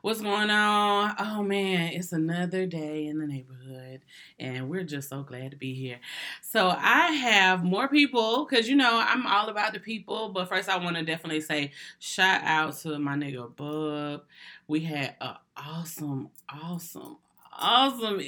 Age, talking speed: 20-39, 165 wpm